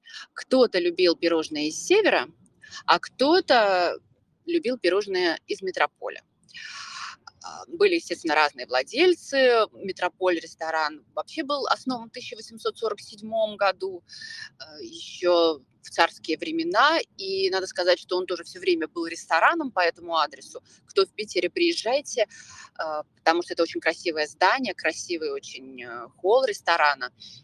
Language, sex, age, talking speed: Russian, female, 20-39, 120 wpm